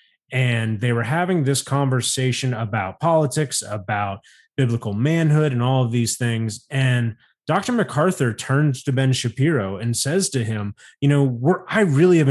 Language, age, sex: English, 20-39, male